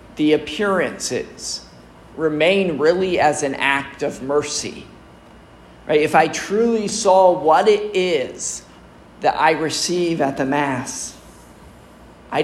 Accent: American